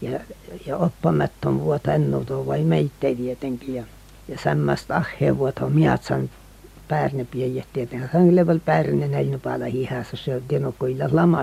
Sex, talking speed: female, 145 wpm